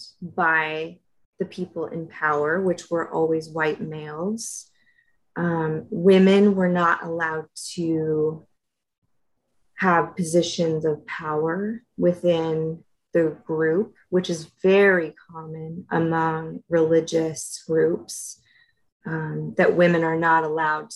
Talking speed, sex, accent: 105 wpm, female, American